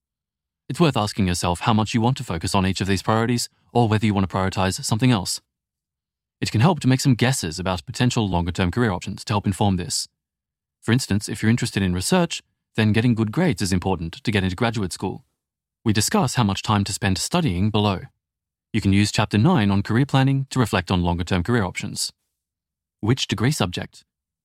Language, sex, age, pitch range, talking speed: English, male, 20-39, 95-125 Hz, 205 wpm